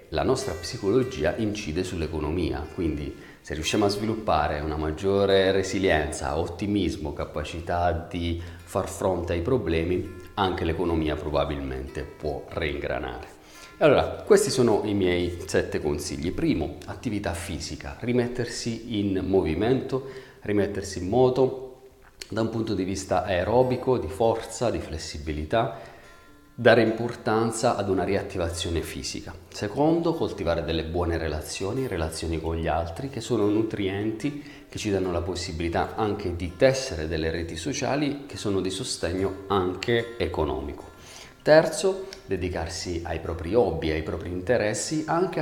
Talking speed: 125 wpm